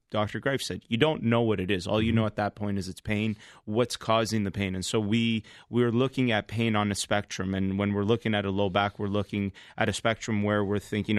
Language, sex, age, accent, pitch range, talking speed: English, male, 30-49, American, 100-115 Hz, 255 wpm